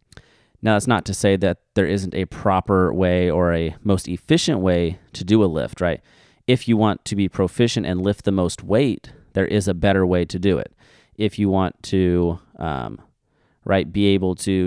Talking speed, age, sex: 200 wpm, 30-49, male